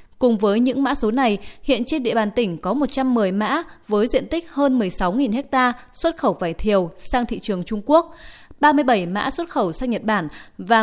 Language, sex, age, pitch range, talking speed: Vietnamese, female, 20-39, 210-275 Hz, 205 wpm